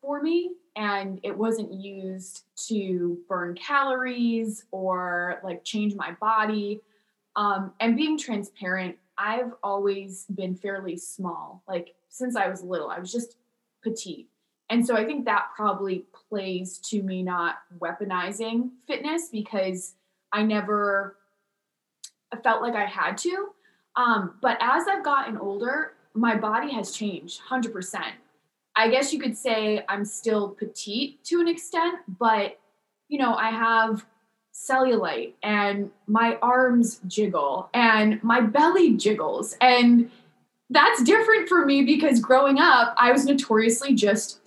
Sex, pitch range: female, 200-250 Hz